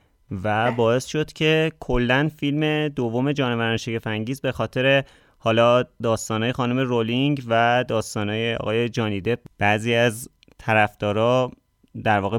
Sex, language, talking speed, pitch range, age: male, Persian, 115 wpm, 110-140 Hz, 30-49